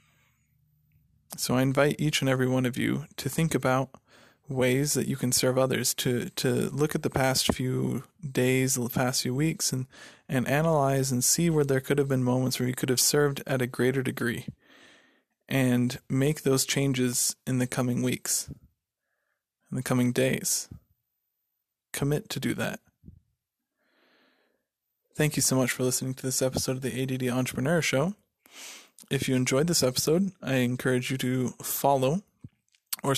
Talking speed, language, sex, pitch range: 165 wpm, English, male, 125-145 Hz